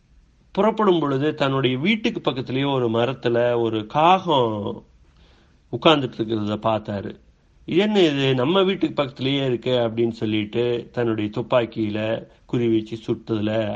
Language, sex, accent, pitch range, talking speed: Tamil, male, native, 110-145 Hz, 100 wpm